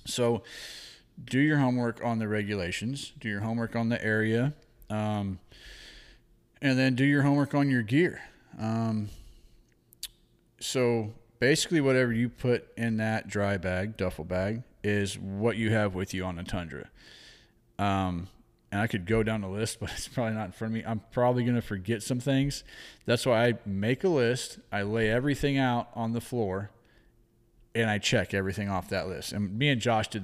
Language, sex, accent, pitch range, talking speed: English, male, American, 105-120 Hz, 180 wpm